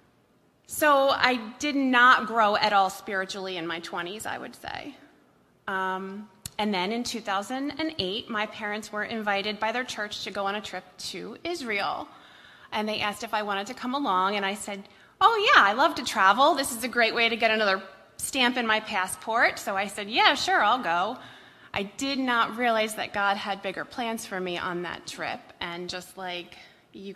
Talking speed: 195 wpm